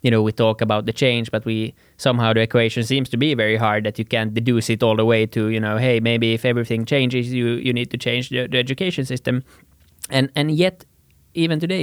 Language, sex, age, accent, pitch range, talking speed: Finnish, male, 20-39, native, 110-125 Hz, 240 wpm